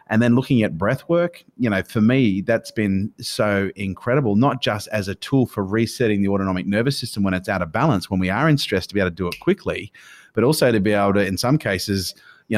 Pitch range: 100-120 Hz